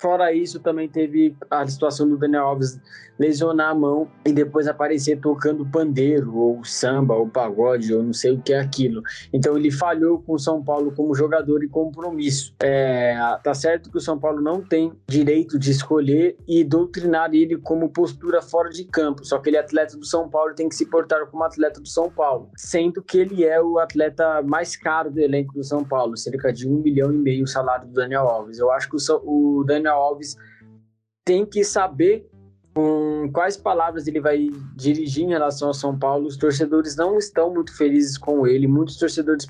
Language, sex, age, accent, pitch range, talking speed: Portuguese, male, 20-39, Brazilian, 135-160 Hz, 200 wpm